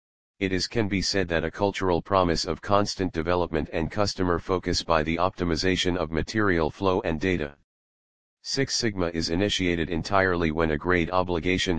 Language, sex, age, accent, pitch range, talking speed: English, male, 40-59, American, 80-95 Hz, 165 wpm